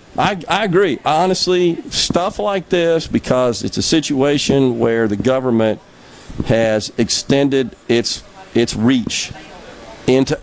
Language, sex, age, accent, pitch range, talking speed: English, male, 50-69, American, 125-195 Hz, 115 wpm